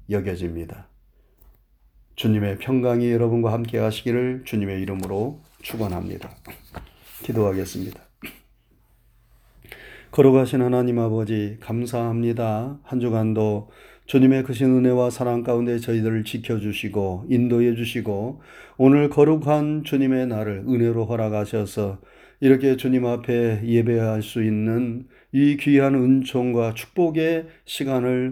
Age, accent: 30-49, native